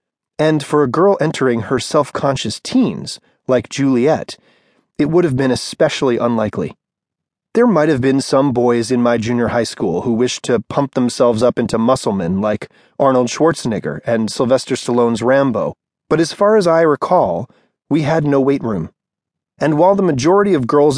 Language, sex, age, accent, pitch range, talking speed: English, male, 30-49, American, 120-160 Hz, 170 wpm